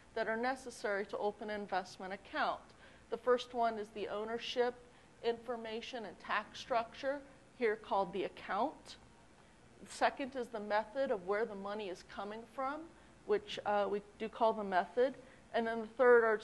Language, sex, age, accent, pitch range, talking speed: English, female, 40-59, American, 215-260 Hz, 170 wpm